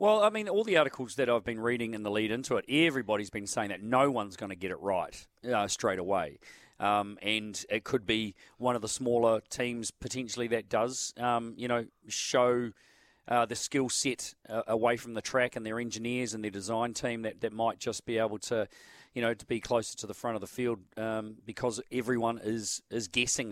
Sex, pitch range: male, 105-120 Hz